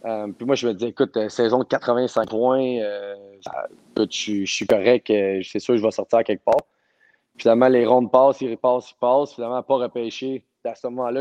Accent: Canadian